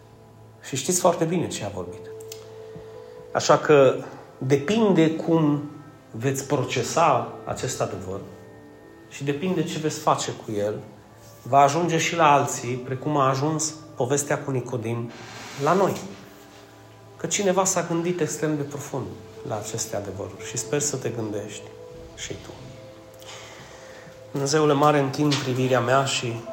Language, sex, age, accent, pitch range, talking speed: Romanian, male, 30-49, native, 110-140 Hz, 130 wpm